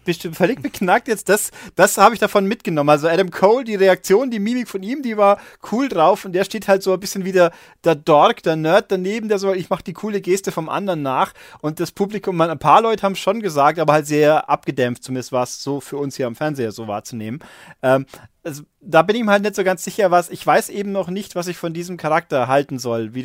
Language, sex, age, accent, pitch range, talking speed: German, male, 30-49, German, 145-190 Hz, 250 wpm